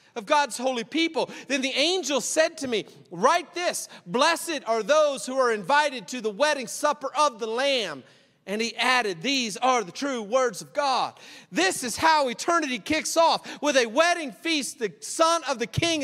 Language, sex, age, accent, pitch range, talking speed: English, male, 40-59, American, 210-285 Hz, 185 wpm